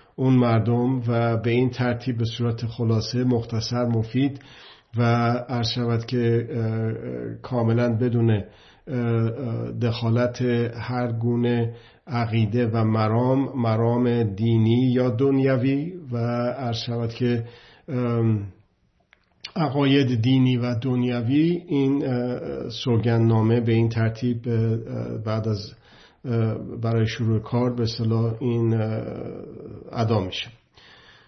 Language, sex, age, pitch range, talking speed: Persian, male, 50-69, 115-125 Hz, 95 wpm